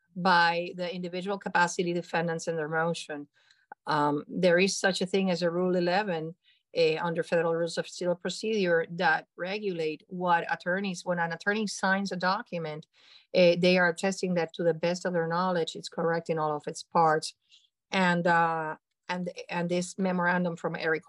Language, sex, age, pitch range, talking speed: English, female, 50-69, 165-190 Hz, 175 wpm